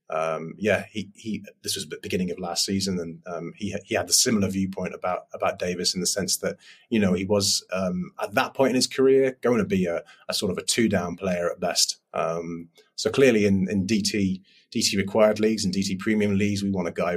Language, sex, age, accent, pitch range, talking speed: English, male, 30-49, British, 95-120 Hz, 240 wpm